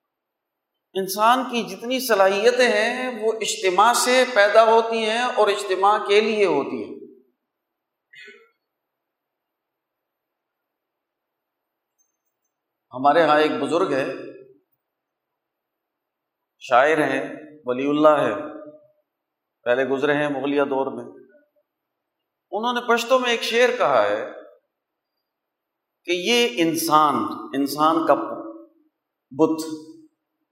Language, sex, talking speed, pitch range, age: Urdu, male, 90 wpm, 195-295 Hz, 50-69